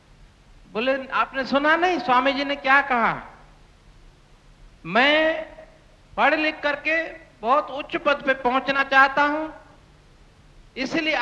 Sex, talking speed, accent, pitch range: male, 110 wpm, native, 260-295 Hz